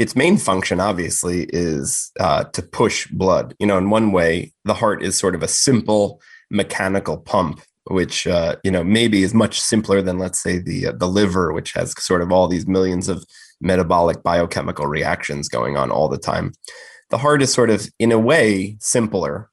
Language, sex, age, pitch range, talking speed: English, male, 20-39, 90-110 Hz, 195 wpm